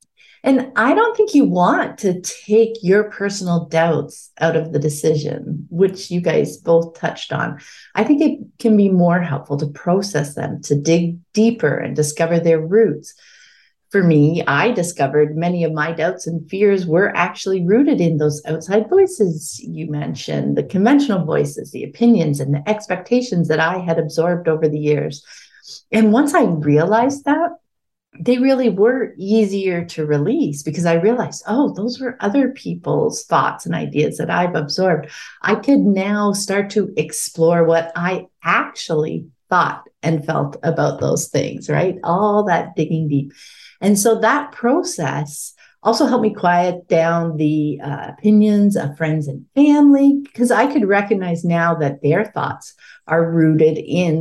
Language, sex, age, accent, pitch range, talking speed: English, female, 40-59, American, 155-220 Hz, 160 wpm